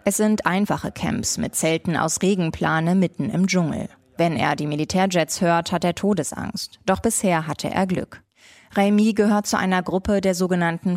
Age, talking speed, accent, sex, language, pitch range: 20-39, 170 wpm, German, female, German, 160-195 Hz